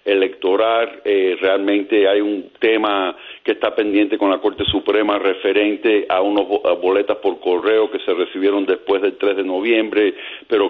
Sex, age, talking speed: male, 50-69, 155 wpm